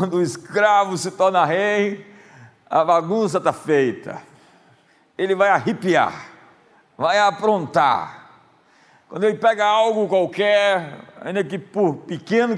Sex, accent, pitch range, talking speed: male, Brazilian, 185-225 Hz, 115 wpm